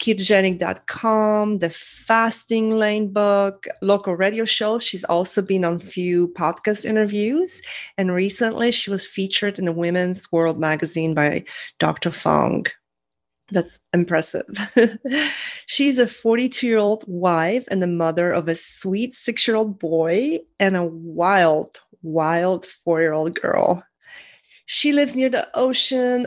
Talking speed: 125 wpm